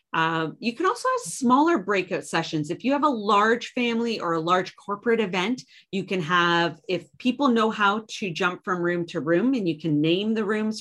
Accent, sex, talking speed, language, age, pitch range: American, female, 210 wpm, English, 30-49, 175-225 Hz